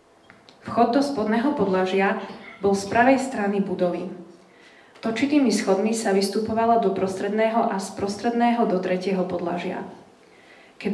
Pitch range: 185-220 Hz